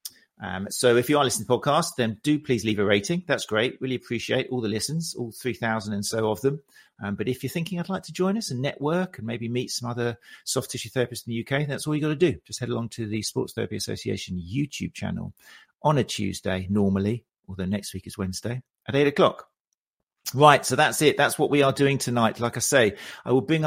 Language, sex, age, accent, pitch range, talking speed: English, male, 40-59, British, 100-130 Hz, 240 wpm